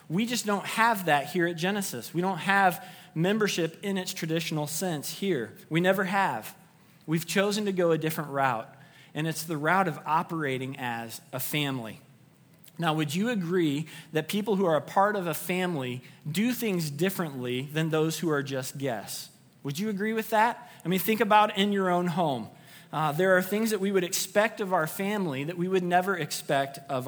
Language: English